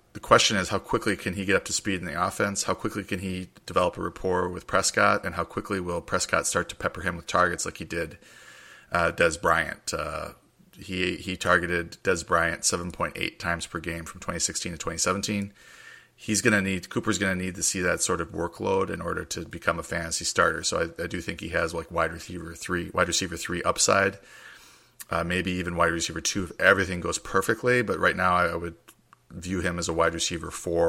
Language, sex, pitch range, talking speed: English, male, 85-95 Hz, 225 wpm